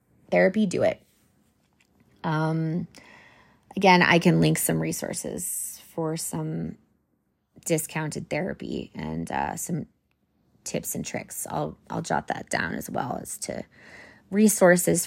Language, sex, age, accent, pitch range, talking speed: English, female, 20-39, American, 150-195 Hz, 120 wpm